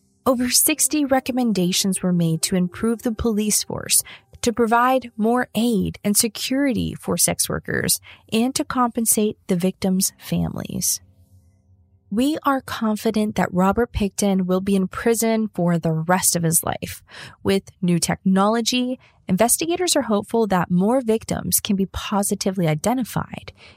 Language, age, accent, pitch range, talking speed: English, 30-49, American, 175-235 Hz, 135 wpm